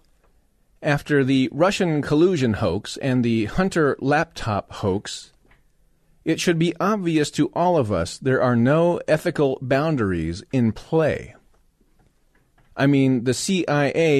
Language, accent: English, American